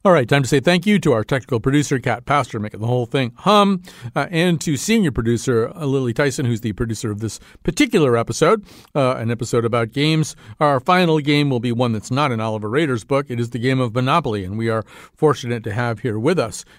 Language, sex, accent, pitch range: English, male, American, 115-145 Hz